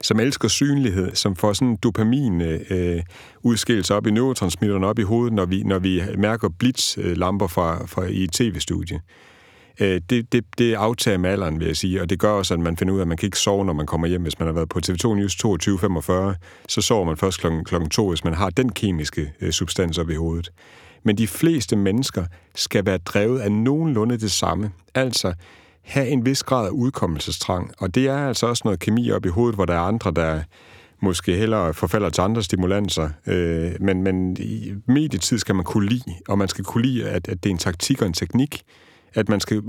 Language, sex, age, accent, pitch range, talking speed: Danish, male, 60-79, native, 90-115 Hz, 215 wpm